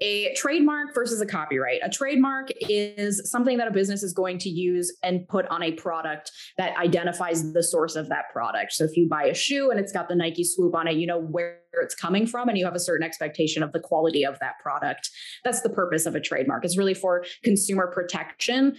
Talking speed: 225 wpm